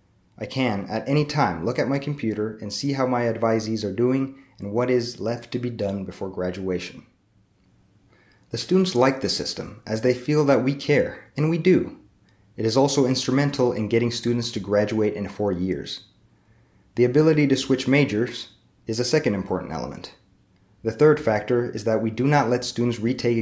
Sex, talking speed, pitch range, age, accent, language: male, 185 wpm, 105-135 Hz, 30-49, American, Finnish